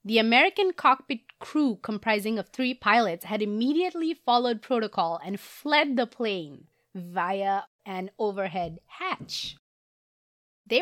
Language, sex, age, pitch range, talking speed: English, female, 20-39, 180-245 Hz, 115 wpm